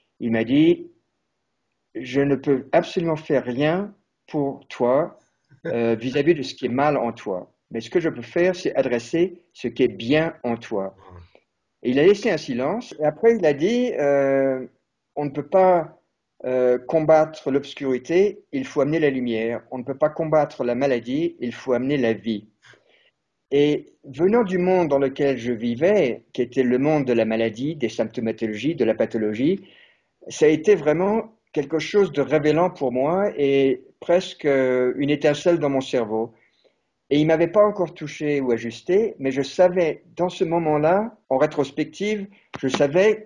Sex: male